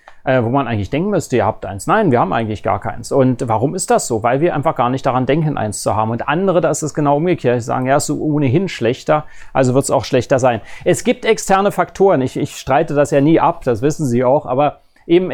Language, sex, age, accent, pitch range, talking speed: German, male, 30-49, German, 135-170 Hz, 260 wpm